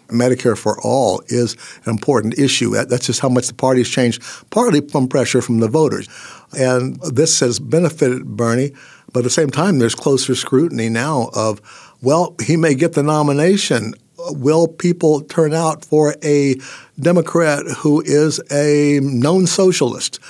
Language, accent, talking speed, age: English, American, 160 wpm, 60-79